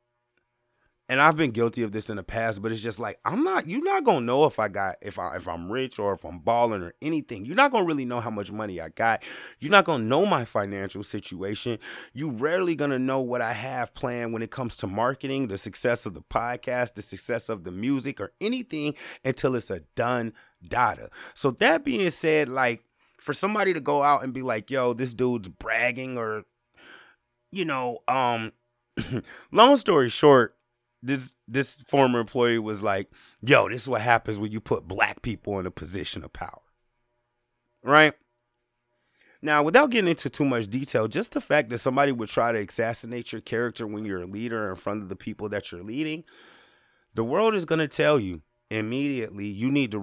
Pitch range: 110-140 Hz